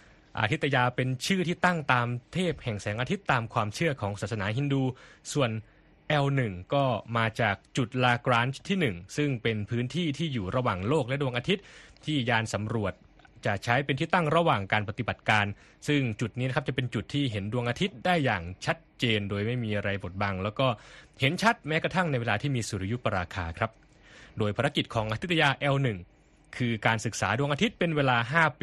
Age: 20-39